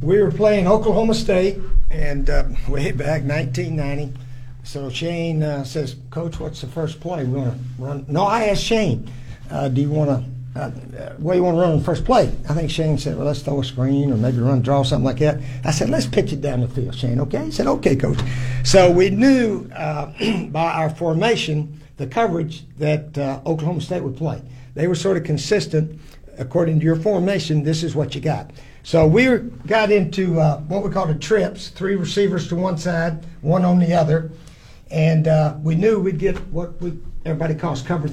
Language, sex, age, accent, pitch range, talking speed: English, male, 60-79, American, 140-185 Hz, 200 wpm